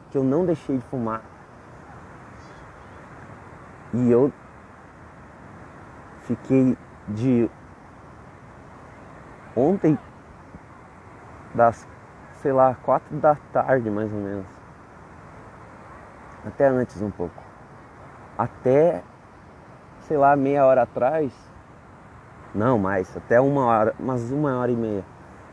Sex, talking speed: male, 90 wpm